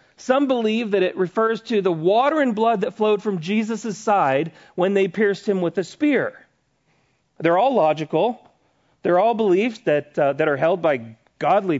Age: 40-59